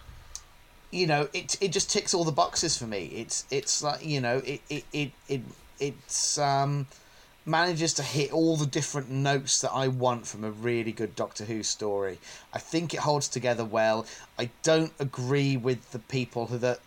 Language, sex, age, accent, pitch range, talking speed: English, male, 30-49, British, 120-145 Hz, 190 wpm